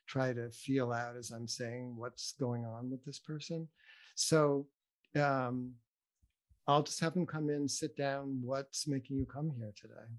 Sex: male